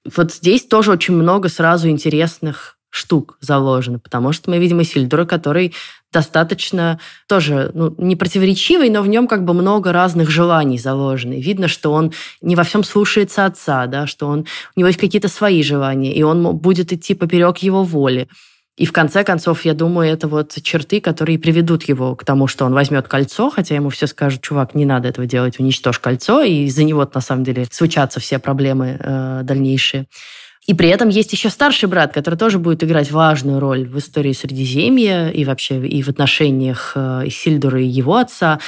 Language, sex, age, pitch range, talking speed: Russian, female, 20-39, 135-175 Hz, 180 wpm